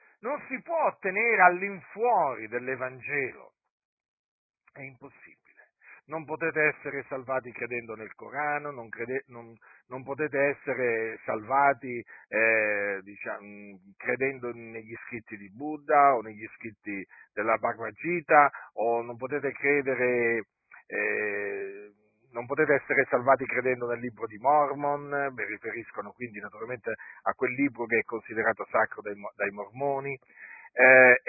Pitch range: 120-160 Hz